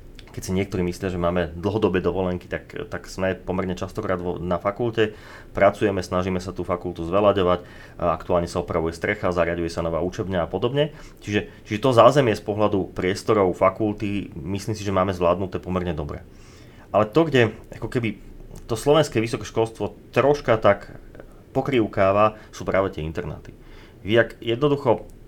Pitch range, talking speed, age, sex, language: 90-110 Hz, 150 wpm, 30-49, male, Slovak